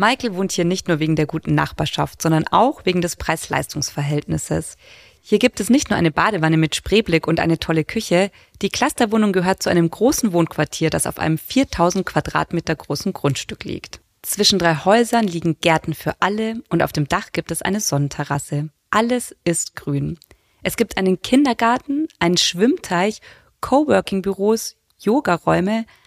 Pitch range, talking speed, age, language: 160-215 Hz, 160 wpm, 20-39, German